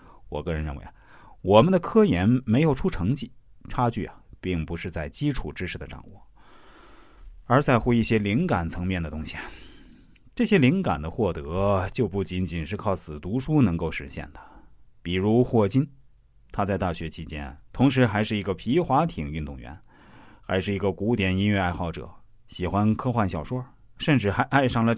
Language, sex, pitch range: Chinese, male, 85-125 Hz